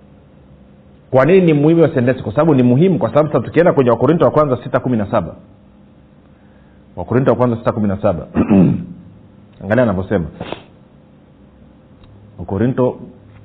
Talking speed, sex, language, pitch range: 105 wpm, male, Swahili, 95-125 Hz